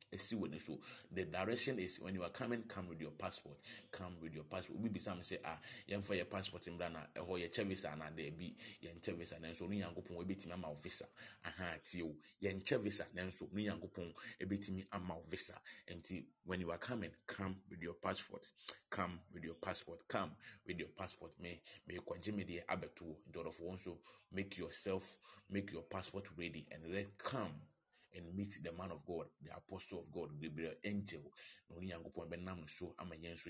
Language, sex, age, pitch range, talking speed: English, male, 30-49, 85-100 Hz, 190 wpm